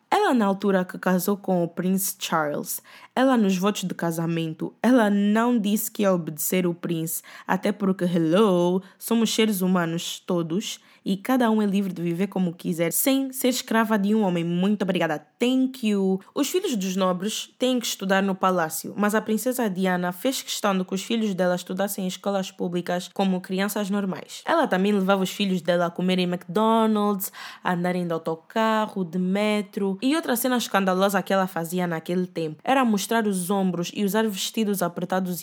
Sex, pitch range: female, 180-220 Hz